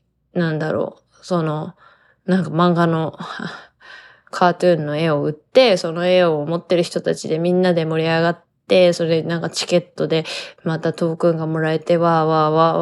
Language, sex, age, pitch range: Japanese, female, 20-39, 160-185 Hz